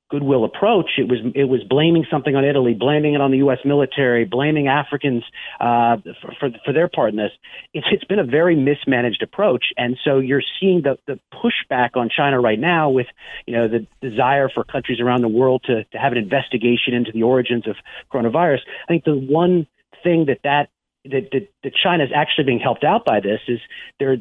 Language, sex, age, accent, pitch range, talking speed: English, male, 40-59, American, 125-145 Hz, 210 wpm